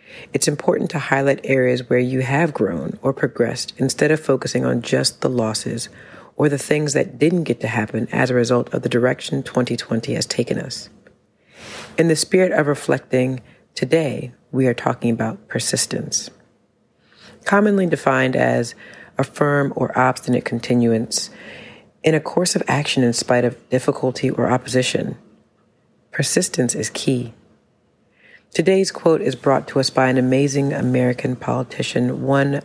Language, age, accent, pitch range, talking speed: English, 40-59, American, 125-145 Hz, 150 wpm